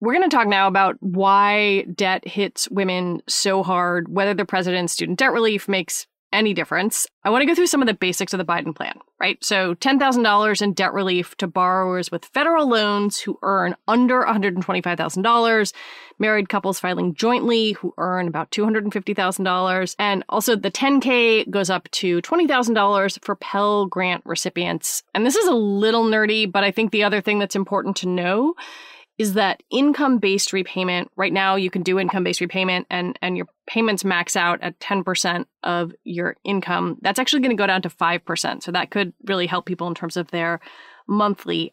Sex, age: female, 30-49